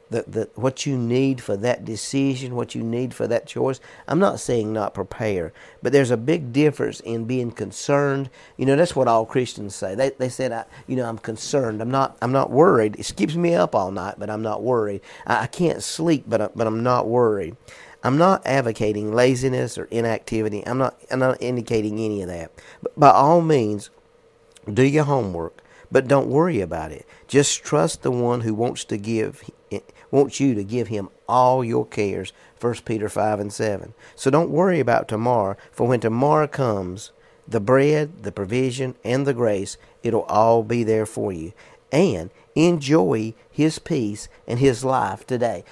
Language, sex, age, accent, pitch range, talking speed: English, male, 50-69, American, 110-135 Hz, 190 wpm